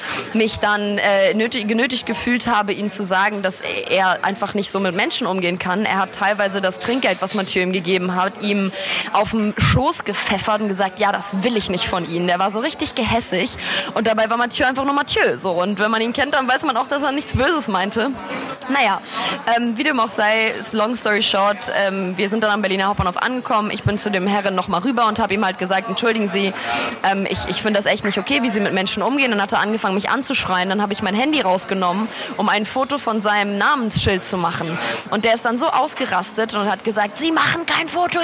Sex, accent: female, German